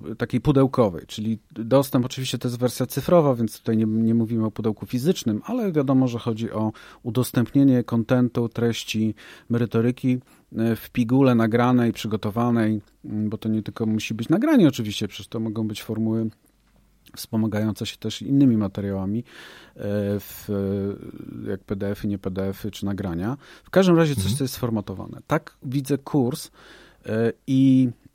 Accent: native